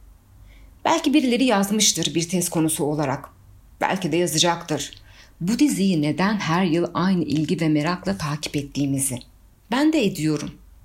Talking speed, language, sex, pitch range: 135 wpm, Turkish, female, 150-220 Hz